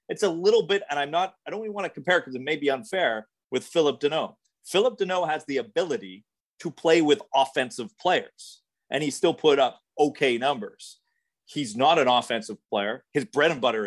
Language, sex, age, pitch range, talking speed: English, male, 30-49, 115-155 Hz, 205 wpm